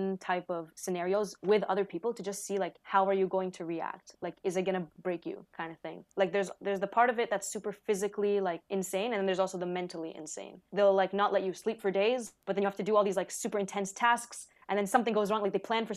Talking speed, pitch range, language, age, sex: 275 wpm, 175-210 Hz, English, 20-39, female